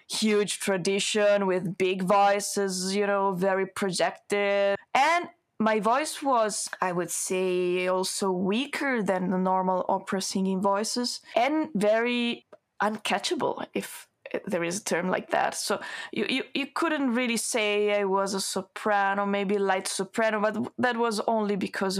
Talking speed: 145 wpm